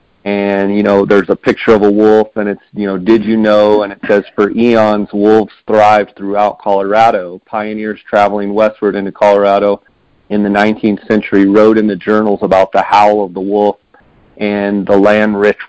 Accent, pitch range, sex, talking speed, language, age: American, 100-110 Hz, male, 180 wpm, English, 40-59